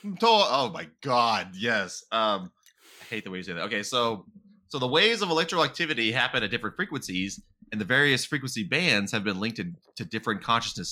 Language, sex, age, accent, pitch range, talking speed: English, male, 20-39, American, 95-125 Hz, 200 wpm